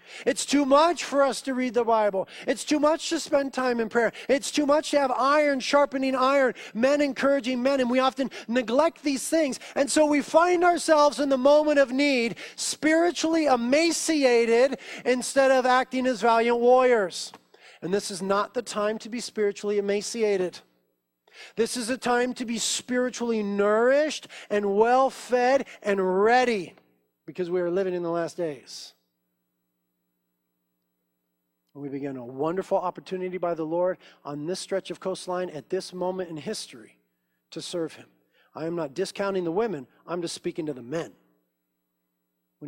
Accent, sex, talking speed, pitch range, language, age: American, male, 165 wpm, 160-255 Hz, English, 40-59